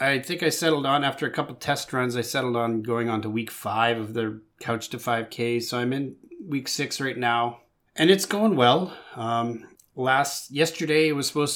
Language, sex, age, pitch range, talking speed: English, male, 30-49, 115-145 Hz, 210 wpm